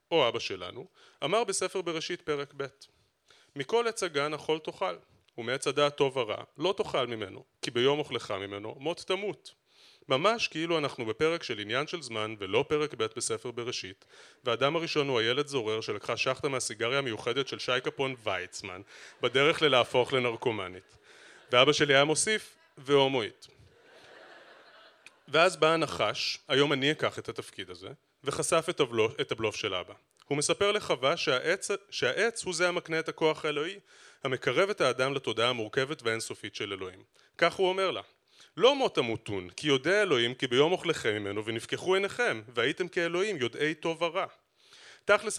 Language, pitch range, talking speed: Hebrew, 135-185 Hz, 155 wpm